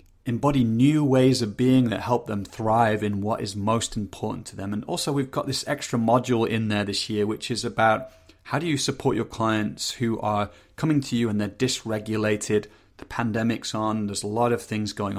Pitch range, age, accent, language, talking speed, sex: 105-120 Hz, 30-49, British, English, 210 wpm, male